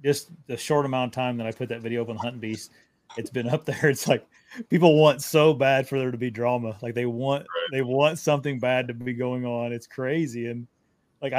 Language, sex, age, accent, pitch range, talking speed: English, male, 30-49, American, 115-140 Hz, 240 wpm